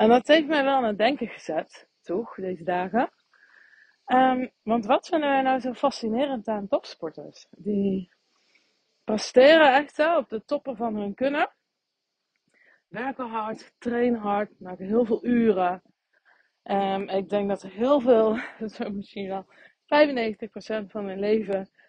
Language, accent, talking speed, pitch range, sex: Dutch, Dutch, 145 wpm, 195-255 Hz, female